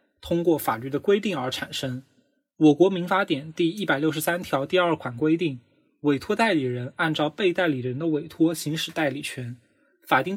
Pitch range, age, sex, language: 140-190 Hz, 20-39, male, Chinese